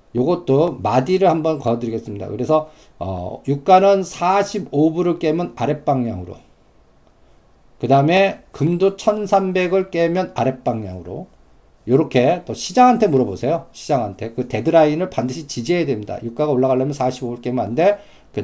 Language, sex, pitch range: Korean, male, 120-160 Hz